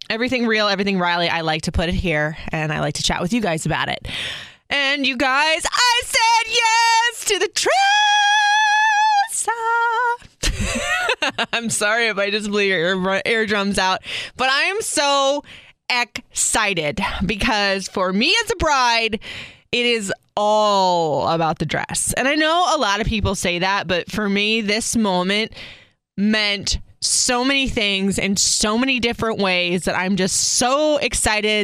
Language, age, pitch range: English, 20-39, 190-260 Hz